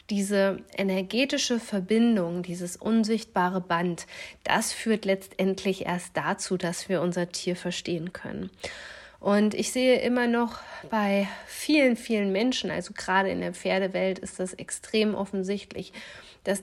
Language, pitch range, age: German, 185-215 Hz, 30-49